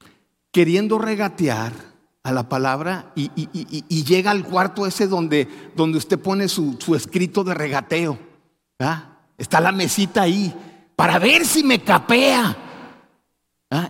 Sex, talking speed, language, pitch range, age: male, 140 wpm, Spanish, 130-190 Hz, 50-69